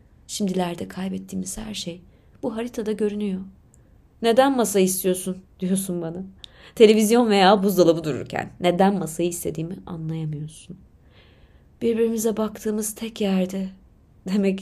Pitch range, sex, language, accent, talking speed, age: 165-215 Hz, female, Turkish, native, 105 wpm, 30-49